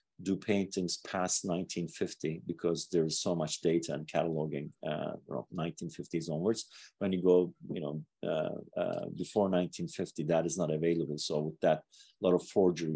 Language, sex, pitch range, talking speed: English, male, 80-95 Hz, 165 wpm